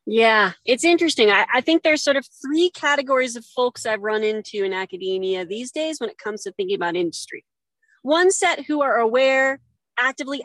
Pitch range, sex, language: 230-315 Hz, female, English